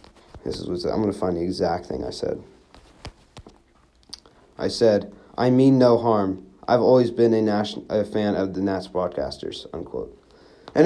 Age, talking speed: 30-49, 170 wpm